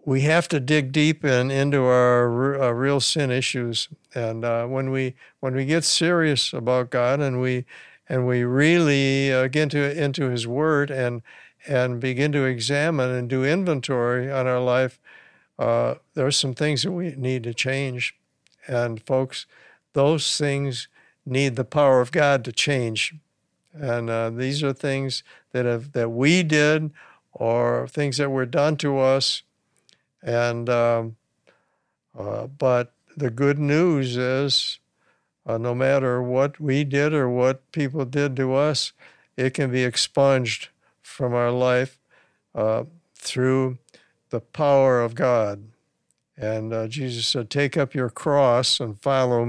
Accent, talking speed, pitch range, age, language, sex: American, 150 wpm, 125-145 Hz, 60-79, English, male